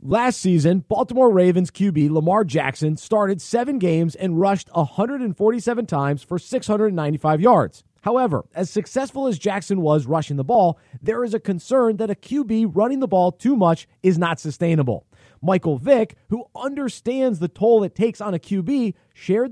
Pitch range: 160-220 Hz